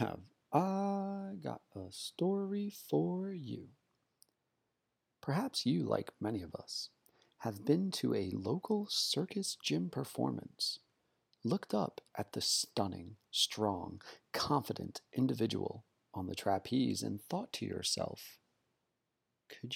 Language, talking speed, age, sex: English, 110 wpm, 30-49, male